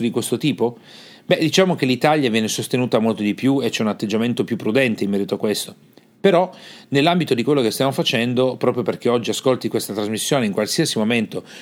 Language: Italian